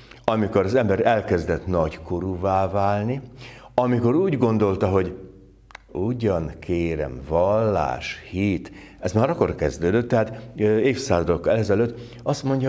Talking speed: 110 wpm